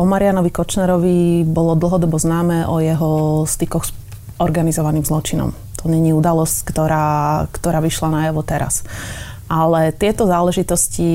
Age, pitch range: 30-49, 155-180 Hz